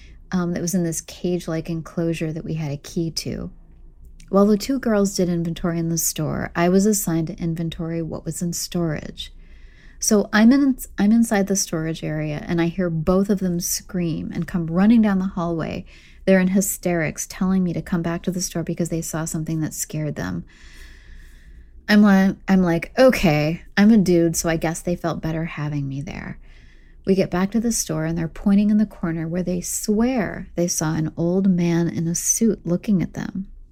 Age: 30-49